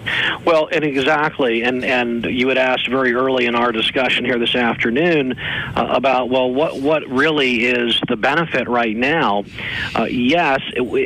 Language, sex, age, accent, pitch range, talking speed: English, male, 50-69, American, 120-150 Hz, 165 wpm